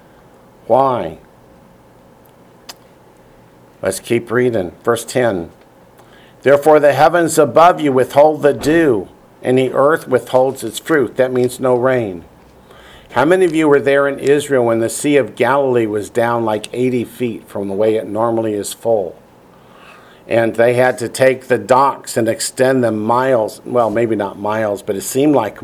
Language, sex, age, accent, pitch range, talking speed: English, male, 50-69, American, 110-150 Hz, 160 wpm